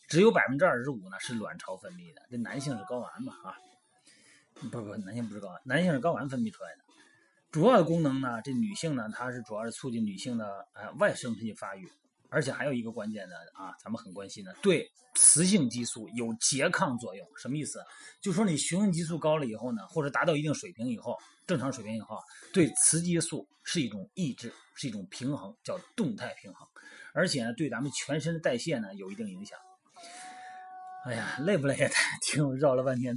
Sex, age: male, 30-49